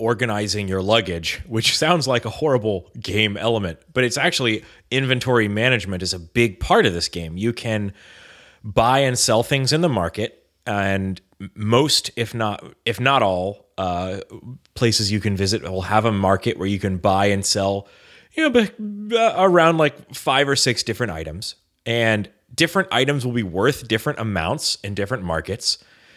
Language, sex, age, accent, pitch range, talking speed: English, male, 30-49, American, 100-135 Hz, 170 wpm